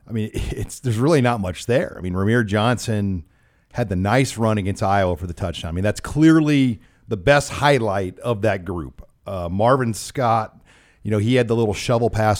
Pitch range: 95-125 Hz